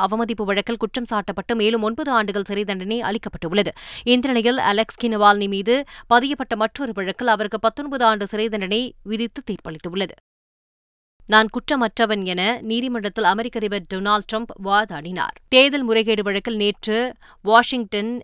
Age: 20-39